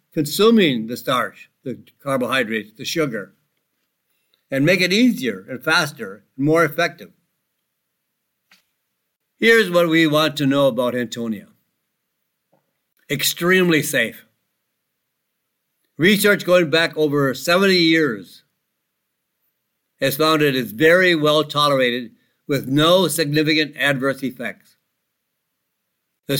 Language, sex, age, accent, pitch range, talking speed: English, male, 60-79, American, 135-175 Hz, 100 wpm